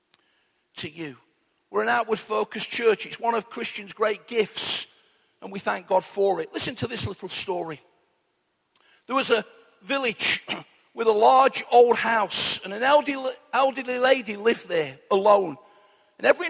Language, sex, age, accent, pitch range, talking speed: English, male, 50-69, British, 205-270 Hz, 155 wpm